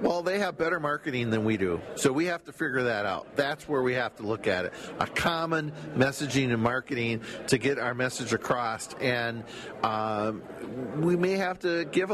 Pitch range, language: 125-160 Hz, English